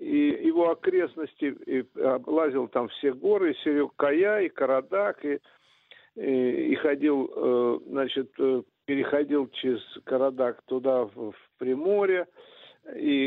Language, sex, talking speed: Russian, male, 120 wpm